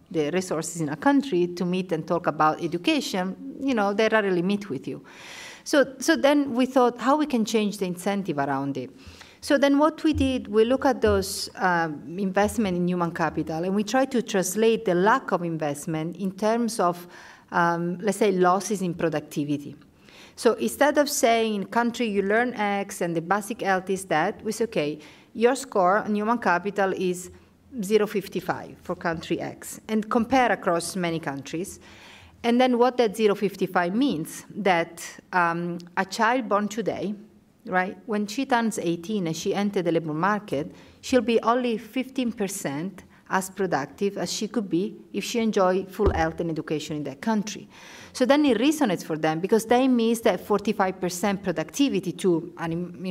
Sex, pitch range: female, 170-230 Hz